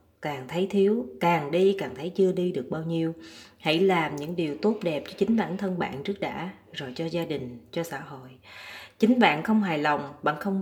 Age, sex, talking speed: 20-39, female, 220 wpm